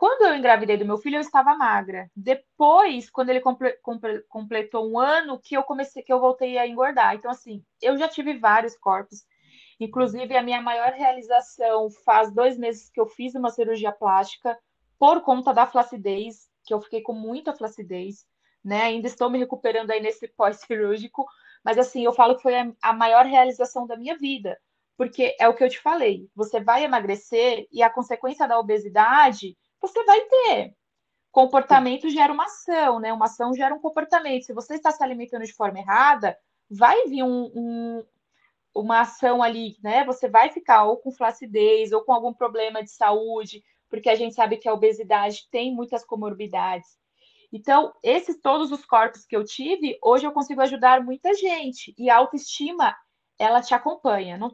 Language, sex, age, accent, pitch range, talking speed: Portuguese, female, 20-39, Brazilian, 220-270 Hz, 175 wpm